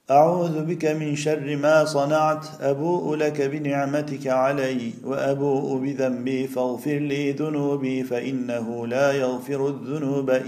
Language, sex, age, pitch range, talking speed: Turkish, male, 50-69, 130-145 Hz, 110 wpm